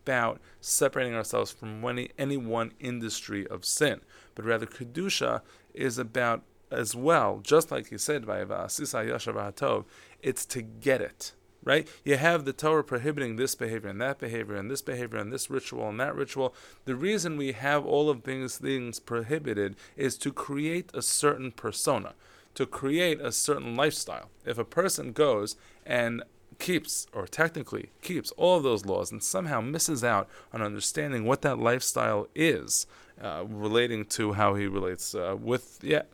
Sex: male